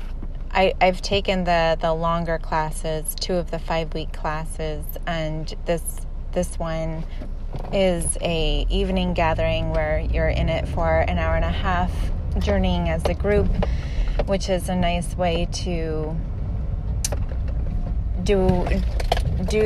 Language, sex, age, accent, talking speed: English, female, 20-39, American, 130 wpm